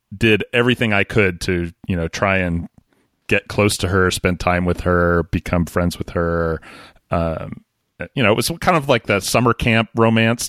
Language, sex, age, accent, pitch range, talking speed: English, male, 30-49, American, 95-120 Hz, 190 wpm